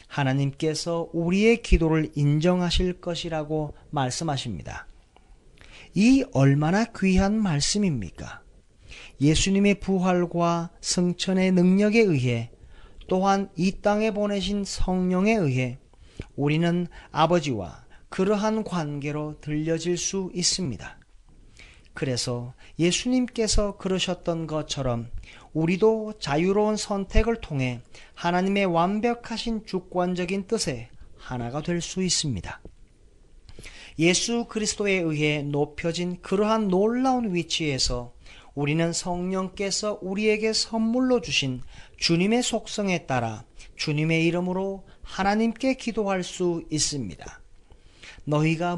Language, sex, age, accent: Korean, male, 40-59, native